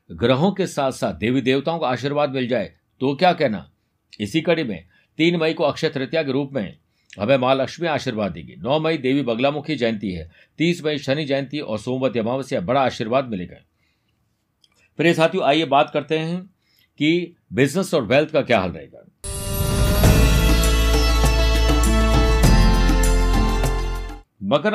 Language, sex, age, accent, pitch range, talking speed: Hindi, male, 50-69, native, 110-155 Hz, 140 wpm